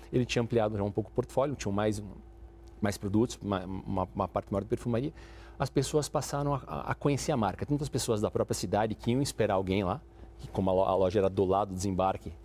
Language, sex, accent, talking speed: Portuguese, male, Brazilian, 230 wpm